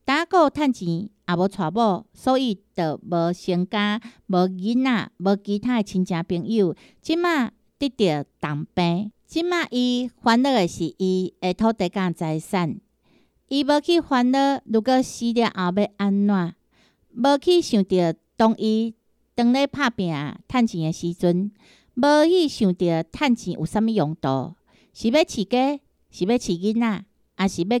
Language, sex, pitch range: Chinese, female, 180-245 Hz